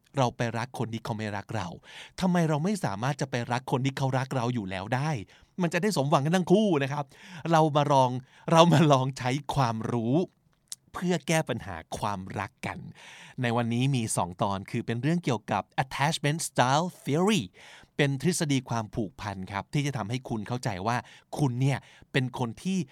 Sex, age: male, 20-39